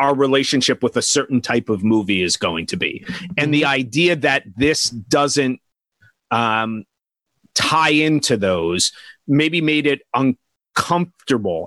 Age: 30-49